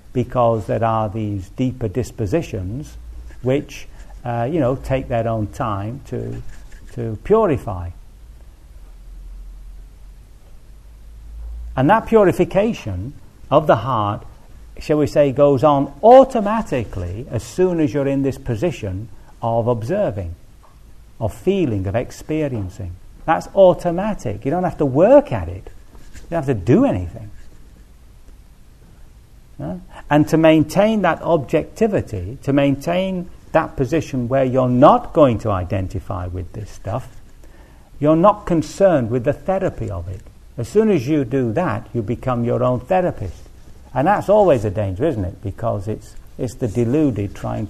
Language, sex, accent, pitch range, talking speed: English, male, British, 100-150 Hz, 135 wpm